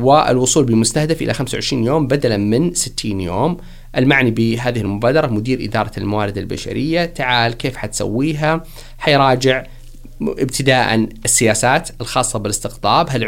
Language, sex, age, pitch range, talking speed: Arabic, male, 30-49, 115-150 Hz, 115 wpm